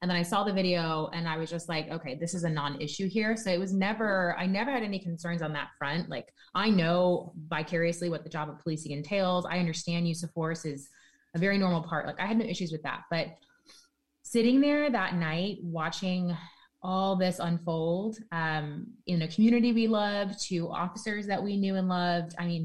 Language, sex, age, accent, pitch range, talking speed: English, female, 20-39, American, 160-190 Hz, 210 wpm